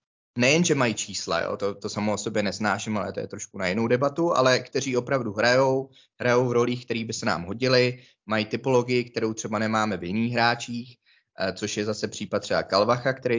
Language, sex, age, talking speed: Czech, male, 20-39, 200 wpm